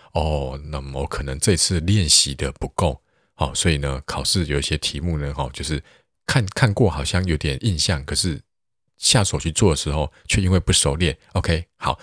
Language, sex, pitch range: Chinese, male, 75-95 Hz